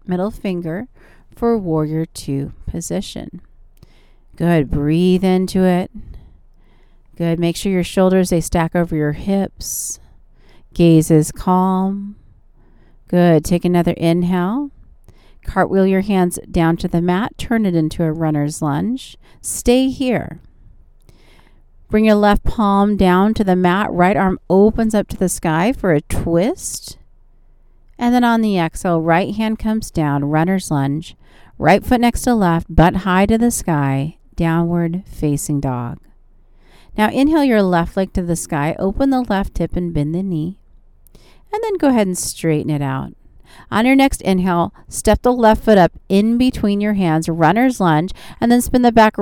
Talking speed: 155 wpm